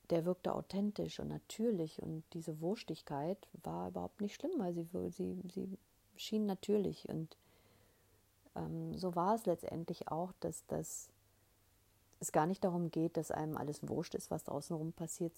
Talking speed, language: 155 wpm, German